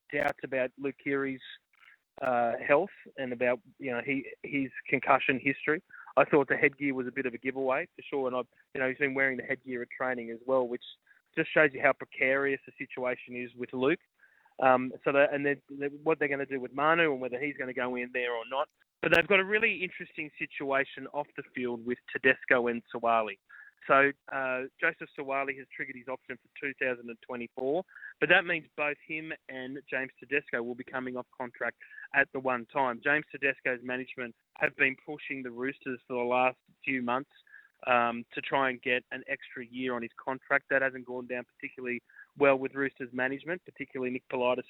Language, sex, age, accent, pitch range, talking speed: English, male, 20-39, Australian, 125-140 Hz, 200 wpm